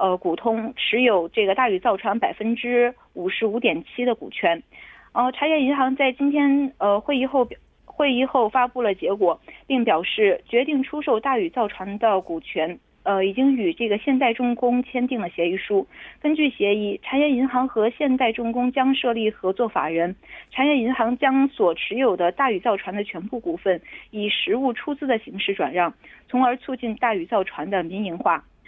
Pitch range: 205-270 Hz